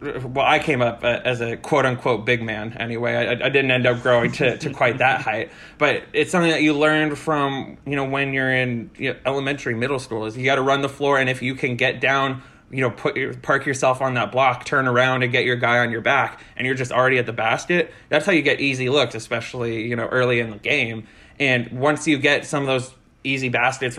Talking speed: 250 wpm